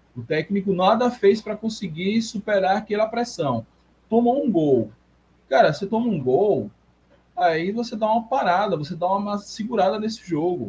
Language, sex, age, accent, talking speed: Portuguese, male, 20-39, Brazilian, 155 wpm